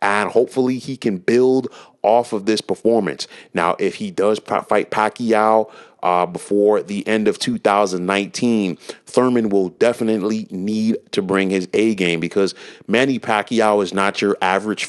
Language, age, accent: English, 30-49, American